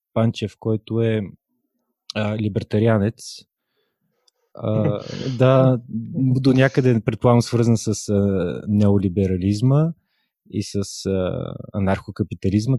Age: 20-39